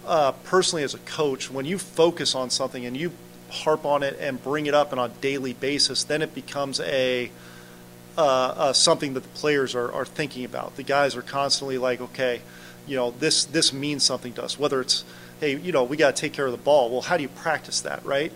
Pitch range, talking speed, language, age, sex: 130-155 Hz, 230 wpm, English, 40-59, male